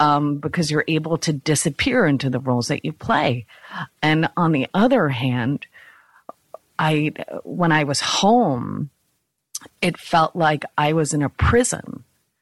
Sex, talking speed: female, 145 wpm